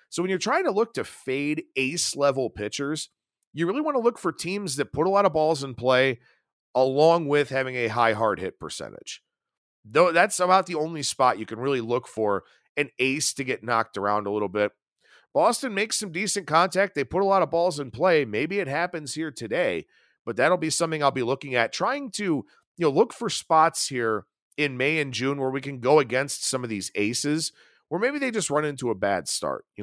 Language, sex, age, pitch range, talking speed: English, male, 40-59, 120-165 Hz, 220 wpm